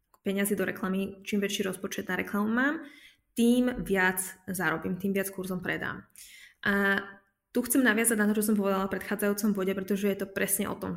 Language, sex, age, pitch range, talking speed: Slovak, female, 20-39, 195-230 Hz, 180 wpm